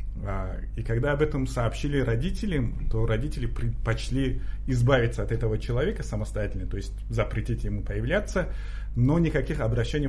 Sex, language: male, Russian